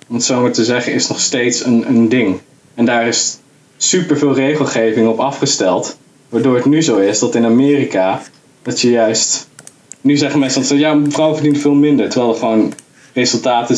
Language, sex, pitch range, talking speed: Dutch, male, 115-140 Hz, 185 wpm